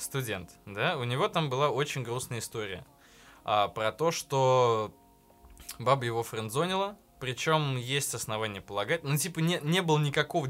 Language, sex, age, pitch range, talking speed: Russian, male, 20-39, 110-150 Hz, 145 wpm